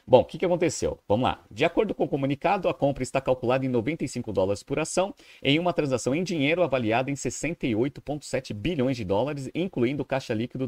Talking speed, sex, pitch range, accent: 195 wpm, male, 105-145 Hz, Brazilian